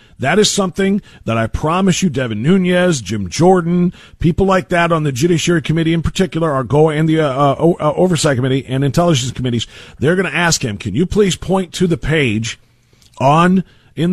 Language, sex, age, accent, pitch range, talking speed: English, male, 50-69, American, 130-190 Hz, 190 wpm